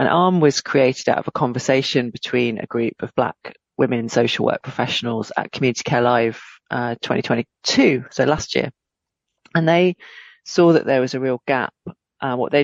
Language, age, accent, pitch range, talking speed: English, 30-49, British, 115-135 Hz, 180 wpm